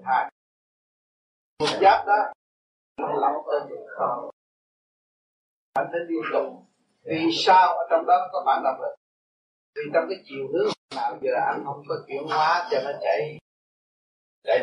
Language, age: Vietnamese, 30-49